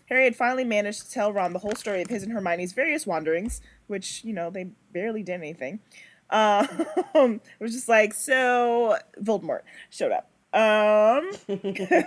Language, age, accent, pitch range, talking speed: English, 30-49, American, 195-245 Hz, 165 wpm